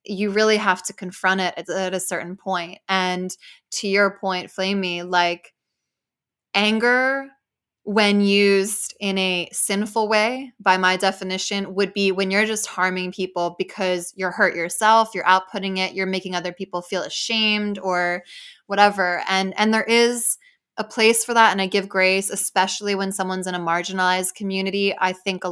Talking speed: 165 wpm